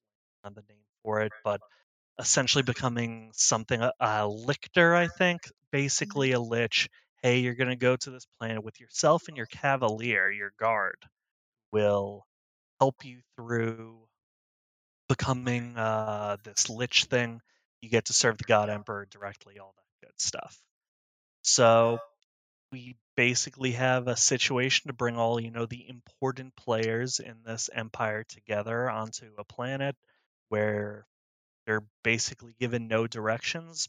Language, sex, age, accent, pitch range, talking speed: English, male, 30-49, American, 110-130 Hz, 140 wpm